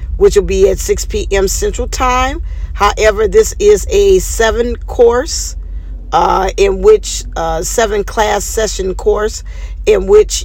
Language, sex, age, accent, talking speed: English, female, 50-69, American, 140 wpm